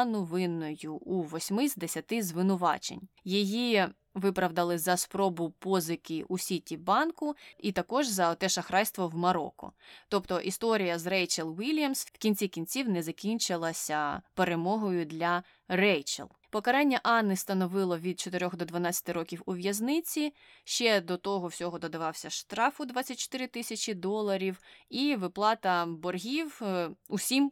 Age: 20-39